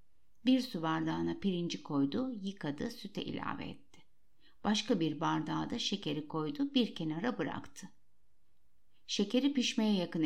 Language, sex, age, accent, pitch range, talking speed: Turkish, female, 60-79, native, 175-245 Hz, 125 wpm